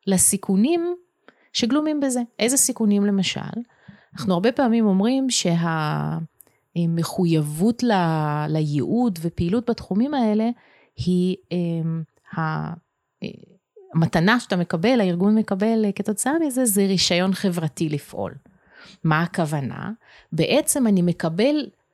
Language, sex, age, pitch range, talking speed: Hebrew, female, 30-49, 165-215 Hz, 90 wpm